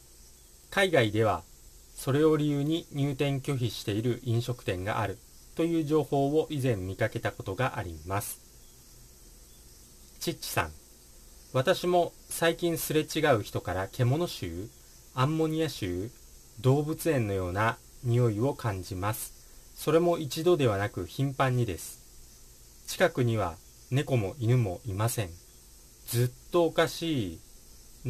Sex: male